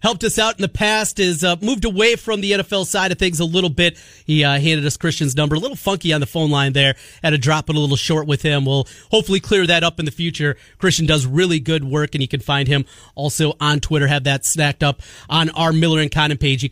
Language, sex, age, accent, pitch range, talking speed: English, male, 30-49, American, 140-190 Hz, 265 wpm